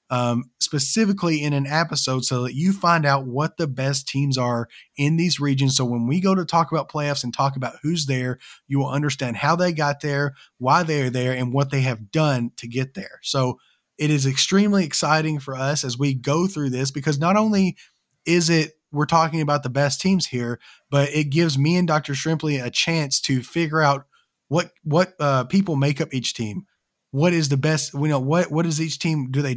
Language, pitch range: English, 130-160 Hz